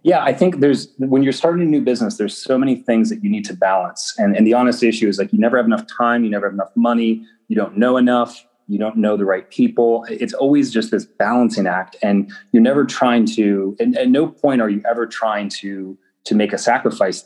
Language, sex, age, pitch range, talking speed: English, male, 30-49, 105-125 Hz, 245 wpm